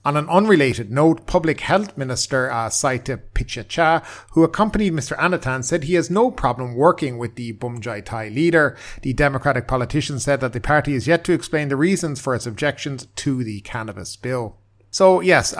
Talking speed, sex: 180 wpm, male